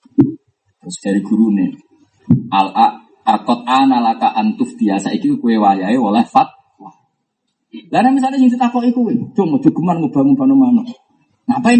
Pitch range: 185-265 Hz